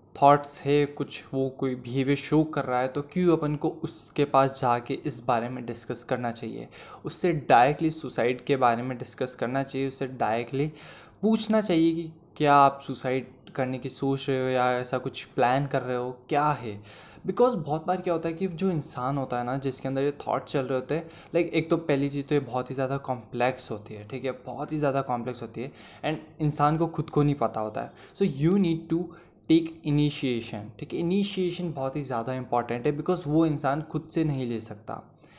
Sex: male